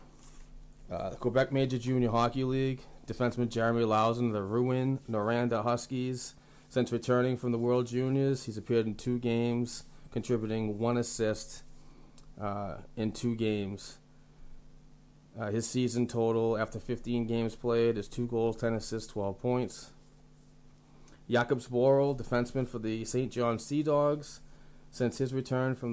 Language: English